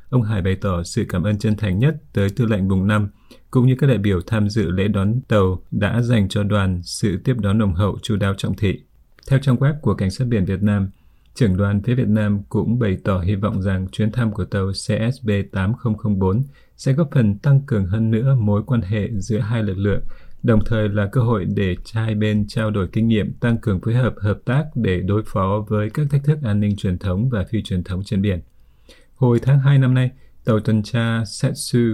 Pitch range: 100-120 Hz